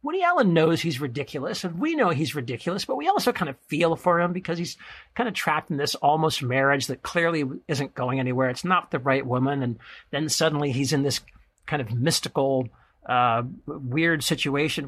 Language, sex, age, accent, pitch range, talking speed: English, male, 50-69, American, 135-170 Hz, 200 wpm